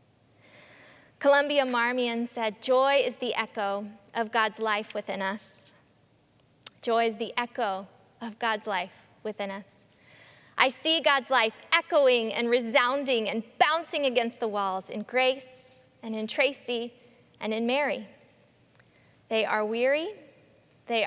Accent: American